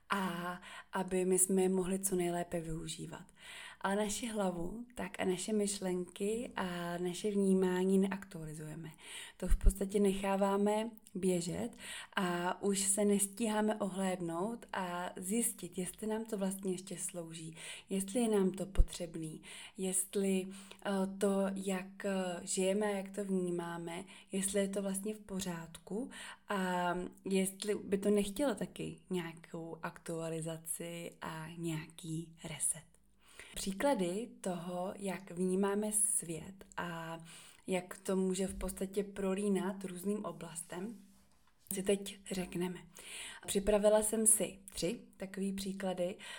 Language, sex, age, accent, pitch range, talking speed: Czech, female, 20-39, native, 175-200 Hz, 120 wpm